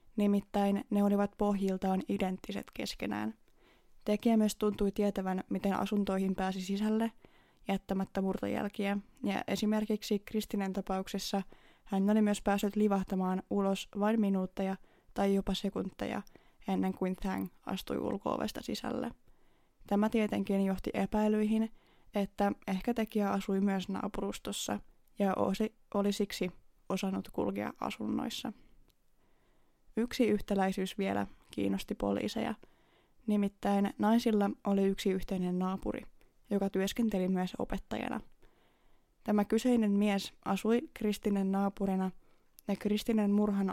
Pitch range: 190-210 Hz